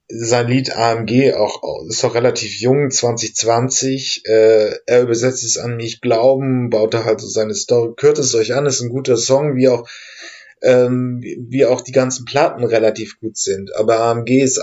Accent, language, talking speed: German, German, 185 wpm